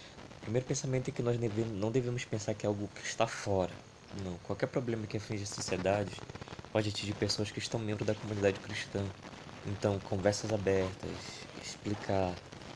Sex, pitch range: male, 95-115 Hz